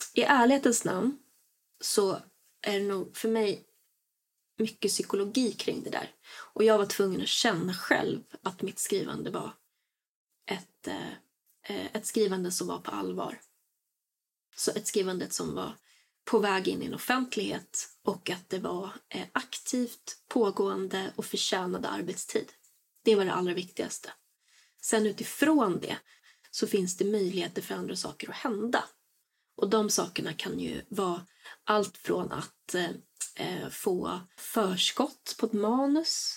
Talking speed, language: 140 wpm, Swedish